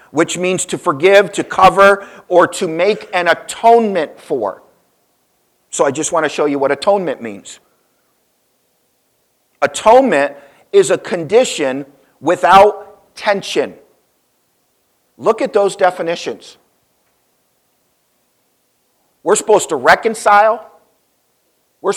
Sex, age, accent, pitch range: male, 50-69, American, 175-220 Hz